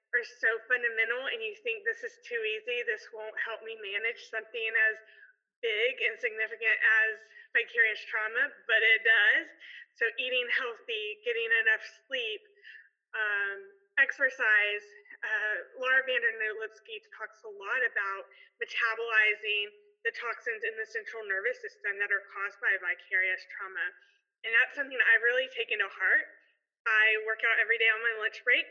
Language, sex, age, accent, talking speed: English, female, 20-39, American, 155 wpm